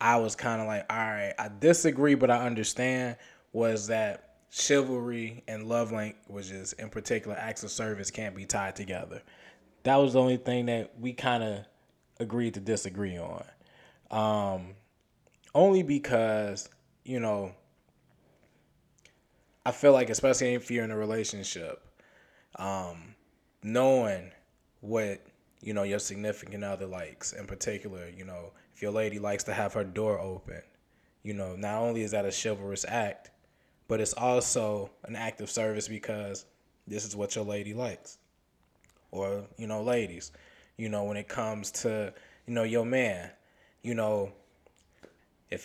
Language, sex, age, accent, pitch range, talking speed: English, male, 20-39, American, 100-120 Hz, 150 wpm